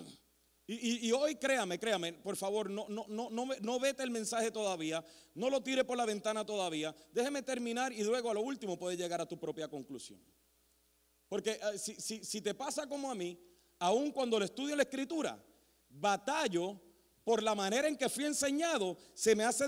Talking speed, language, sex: 185 wpm, Spanish, male